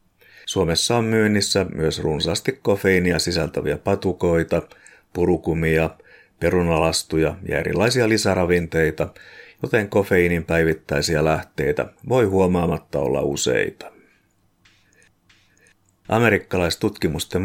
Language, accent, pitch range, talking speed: Finnish, native, 85-100 Hz, 75 wpm